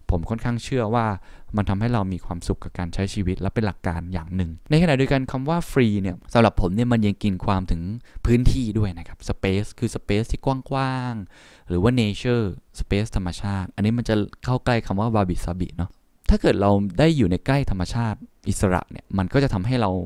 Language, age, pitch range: Thai, 20-39, 90-120 Hz